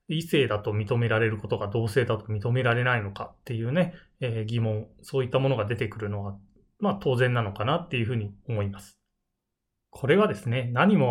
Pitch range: 110-160 Hz